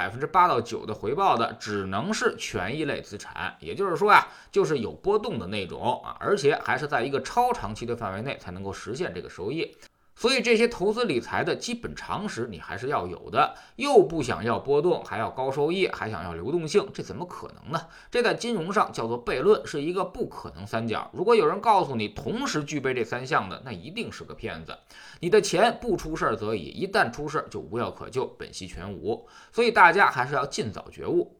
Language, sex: Chinese, male